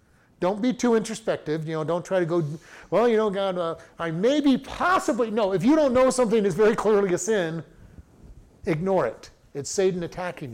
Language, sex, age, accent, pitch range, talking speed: English, male, 50-69, American, 155-215 Hz, 195 wpm